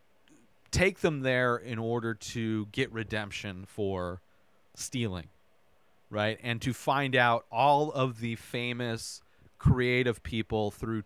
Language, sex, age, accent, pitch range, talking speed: English, male, 30-49, American, 105-135 Hz, 120 wpm